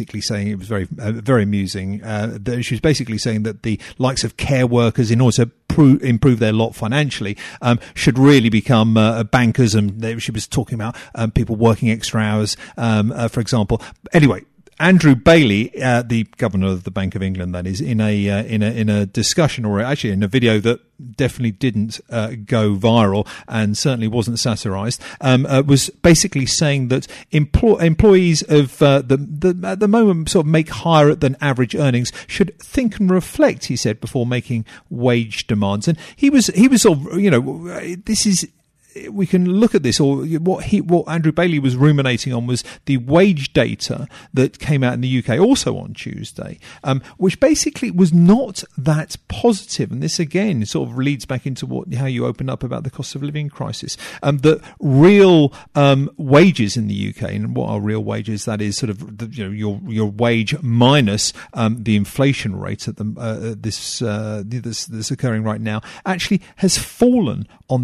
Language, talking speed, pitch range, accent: English, 195 wpm, 110-150 Hz, British